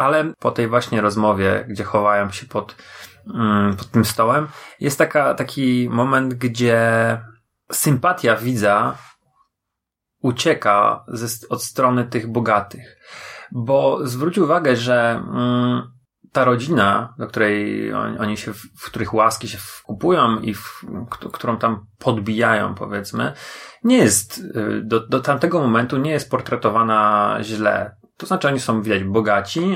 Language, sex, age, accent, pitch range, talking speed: Polish, male, 30-49, native, 110-135 Hz, 125 wpm